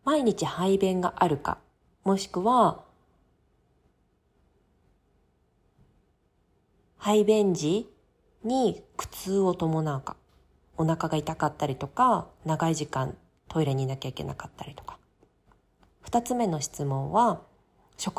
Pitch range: 140-205 Hz